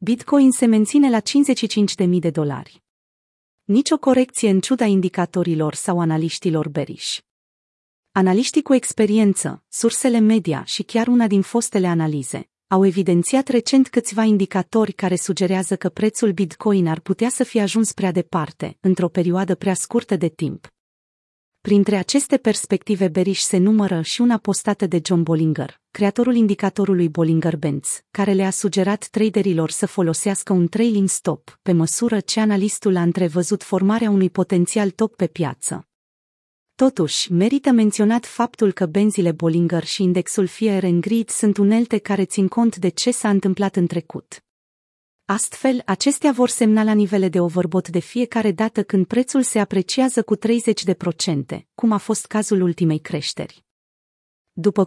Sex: female